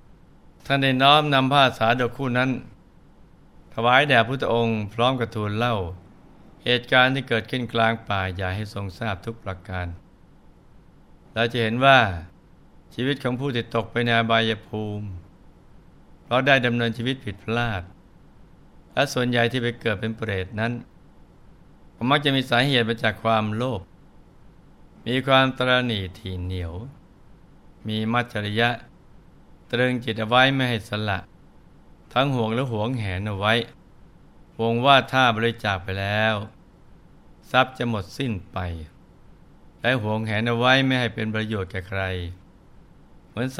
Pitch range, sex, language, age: 105-125 Hz, male, Thai, 60-79